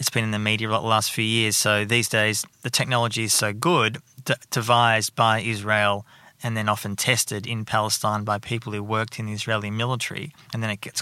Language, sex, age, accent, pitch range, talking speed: English, male, 20-39, Australian, 110-140 Hz, 200 wpm